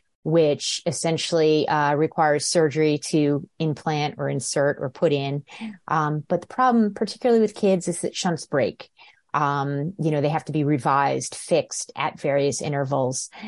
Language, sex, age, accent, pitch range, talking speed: English, female, 30-49, American, 150-180 Hz, 155 wpm